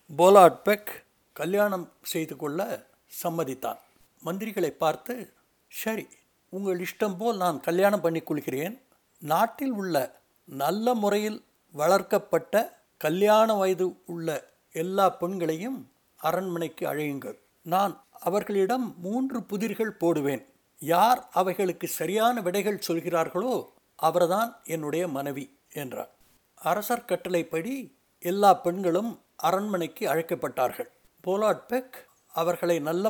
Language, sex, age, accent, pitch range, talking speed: Tamil, male, 60-79, native, 170-225 Hz, 90 wpm